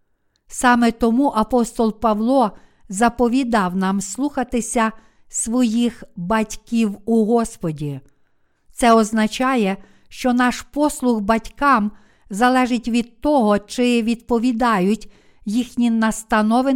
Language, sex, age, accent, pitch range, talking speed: Ukrainian, female, 50-69, native, 210-245 Hz, 85 wpm